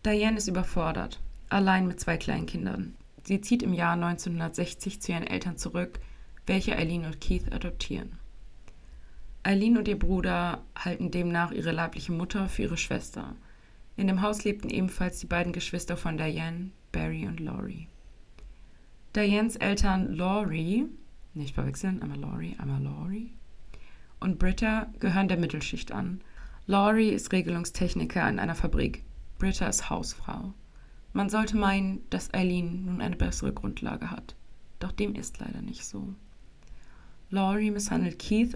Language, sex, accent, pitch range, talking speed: German, female, German, 170-200 Hz, 135 wpm